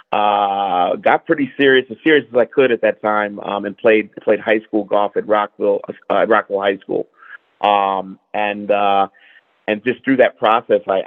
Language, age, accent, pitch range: English, 30-49, American, 100-110 Hz